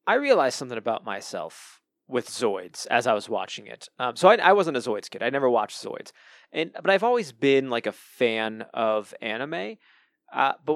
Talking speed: 200 wpm